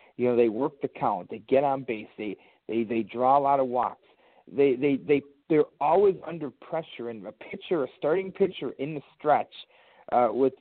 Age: 40-59